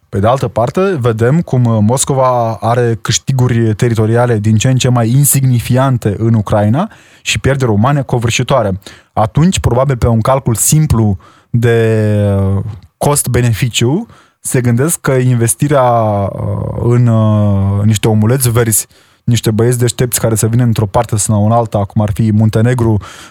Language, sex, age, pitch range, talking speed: Romanian, male, 20-39, 105-125 Hz, 135 wpm